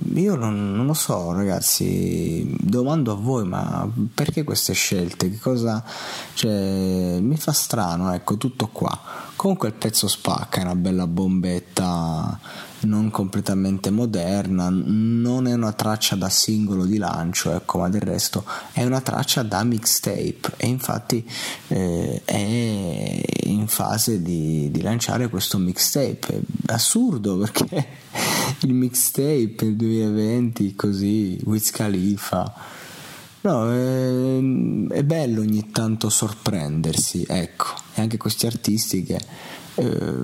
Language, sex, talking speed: Italian, male, 125 wpm